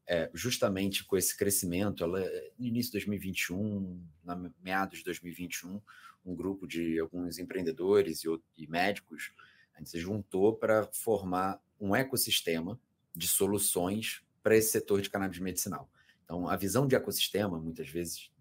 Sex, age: male, 30-49